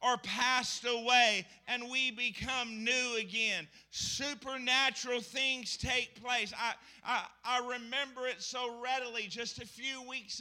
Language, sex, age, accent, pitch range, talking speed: English, male, 50-69, American, 225-255 Hz, 135 wpm